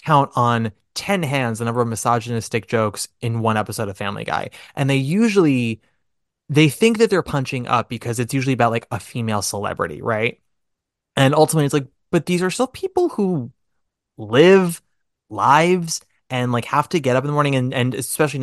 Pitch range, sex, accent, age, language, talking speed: 115-150 Hz, male, American, 20-39, English, 185 wpm